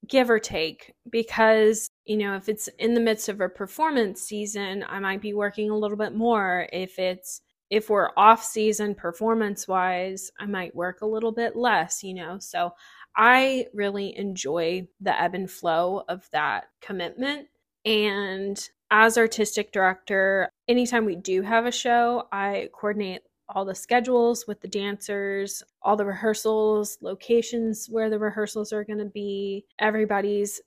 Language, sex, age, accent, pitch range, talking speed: English, female, 20-39, American, 195-225 Hz, 155 wpm